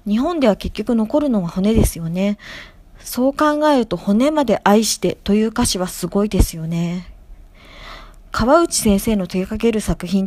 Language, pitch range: Japanese, 190-250 Hz